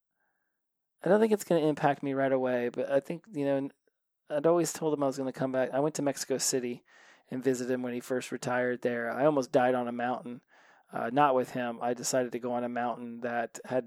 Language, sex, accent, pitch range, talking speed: English, male, American, 130-150 Hz, 245 wpm